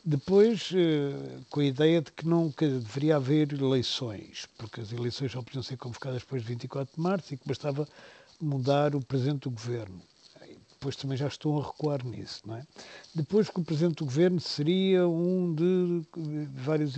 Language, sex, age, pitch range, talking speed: Portuguese, male, 50-69, 135-175 Hz, 175 wpm